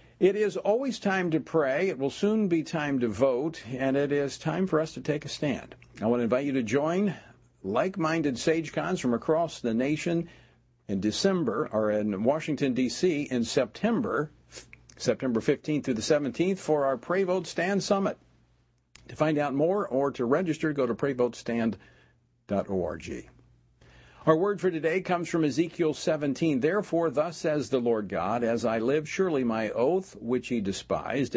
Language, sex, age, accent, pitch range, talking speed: English, male, 50-69, American, 120-160 Hz, 170 wpm